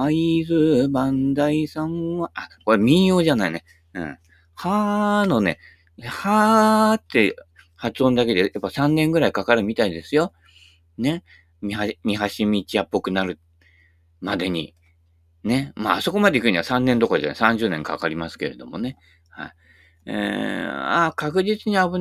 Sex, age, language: male, 40-59, Japanese